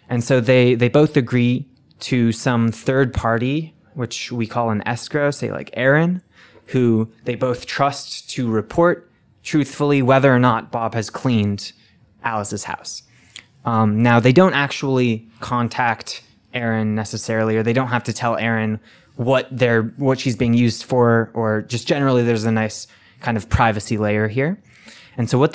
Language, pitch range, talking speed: English, 110-135 Hz, 160 wpm